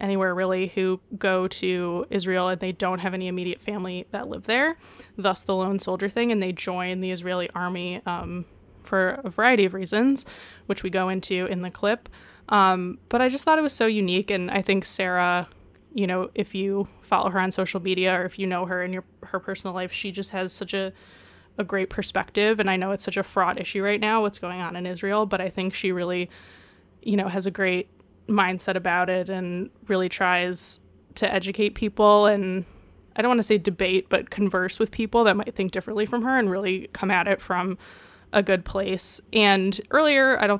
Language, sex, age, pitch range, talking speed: English, female, 20-39, 185-205 Hz, 210 wpm